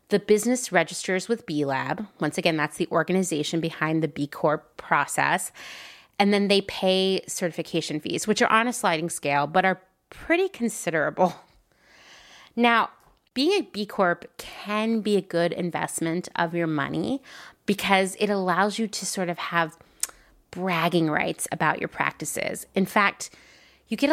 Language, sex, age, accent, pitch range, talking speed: English, female, 30-49, American, 165-200 Hz, 150 wpm